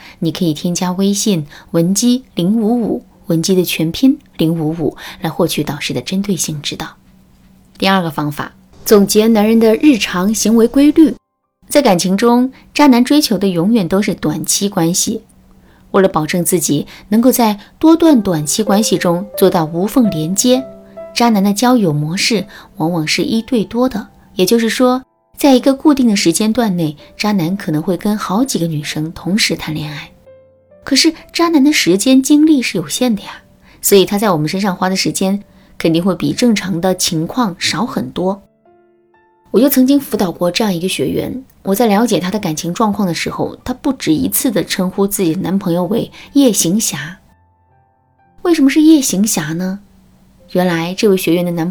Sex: female